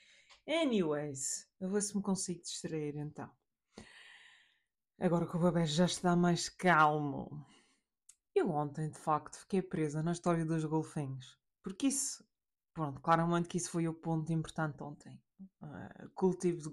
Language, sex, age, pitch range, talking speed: Portuguese, female, 20-39, 160-190 Hz, 145 wpm